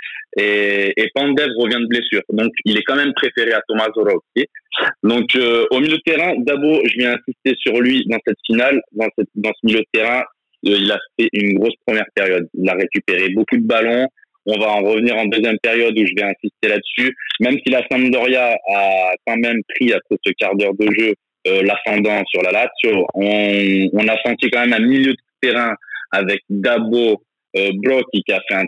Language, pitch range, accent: French, 100-130 Hz, French